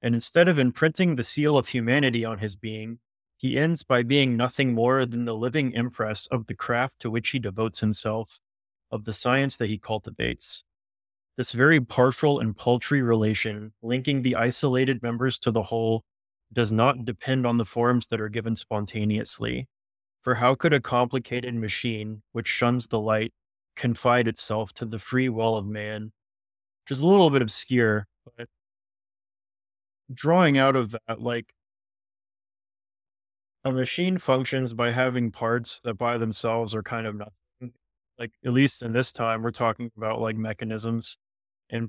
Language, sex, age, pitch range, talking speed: English, male, 20-39, 110-125 Hz, 160 wpm